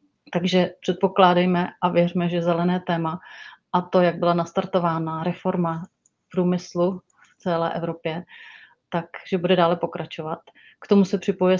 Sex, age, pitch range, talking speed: female, 30-49, 170-185 Hz, 130 wpm